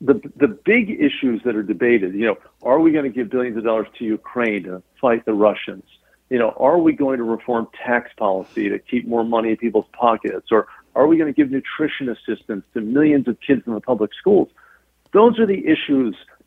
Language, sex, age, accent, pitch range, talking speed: English, male, 50-69, American, 115-155 Hz, 215 wpm